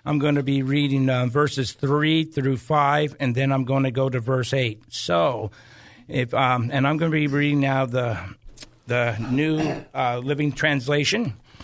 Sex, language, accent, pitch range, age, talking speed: male, English, American, 125-150 Hz, 50-69, 180 wpm